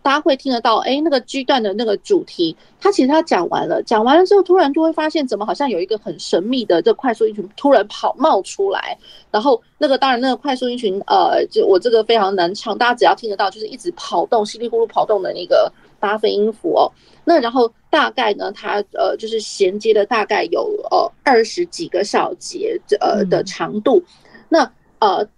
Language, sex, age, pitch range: Chinese, female, 30-49, 220-285 Hz